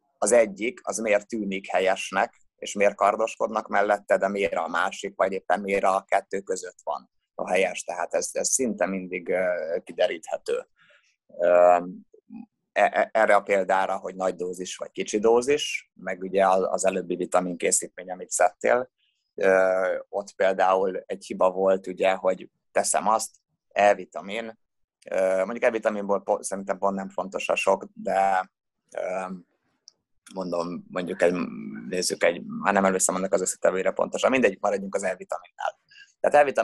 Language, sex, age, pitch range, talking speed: Hungarian, male, 20-39, 95-110 Hz, 135 wpm